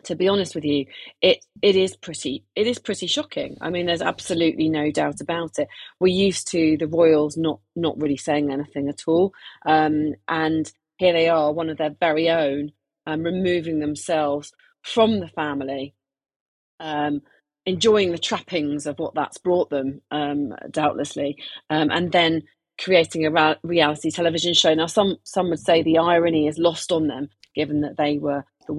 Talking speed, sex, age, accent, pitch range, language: 175 wpm, female, 30-49, British, 145-180 Hz, English